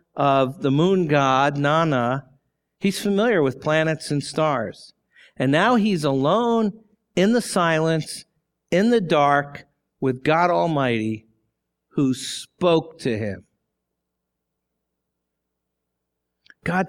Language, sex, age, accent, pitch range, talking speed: English, male, 50-69, American, 130-185 Hz, 105 wpm